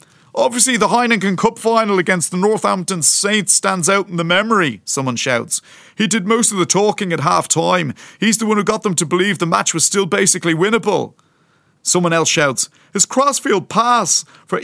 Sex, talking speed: male, 185 wpm